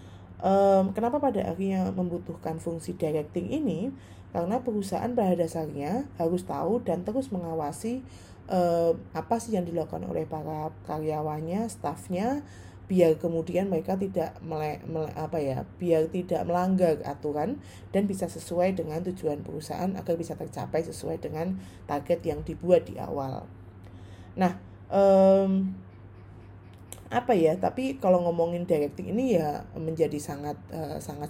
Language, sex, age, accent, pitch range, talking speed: Indonesian, female, 20-39, native, 145-180 Hz, 130 wpm